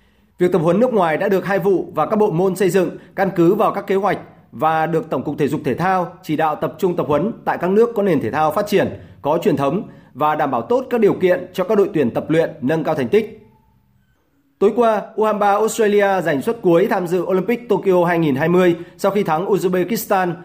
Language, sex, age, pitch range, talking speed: Vietnamese, male, 30-49, 160-200 Hz, 235 wpm